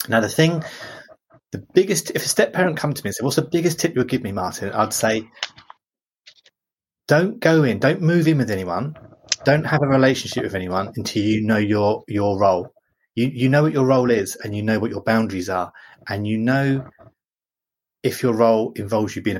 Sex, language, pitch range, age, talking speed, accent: male, English, 110-145 Hz, 30-49, 205 wpm, British